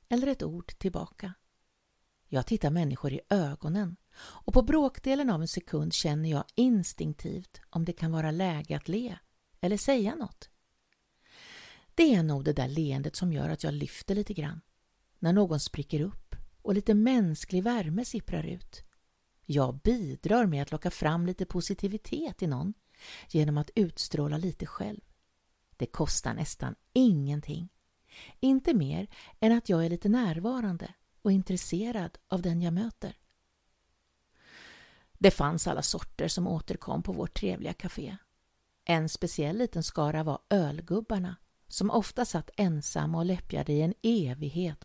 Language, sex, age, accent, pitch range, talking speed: Swedish, female, 50-69, native, 155-205 Hz, 145 wpm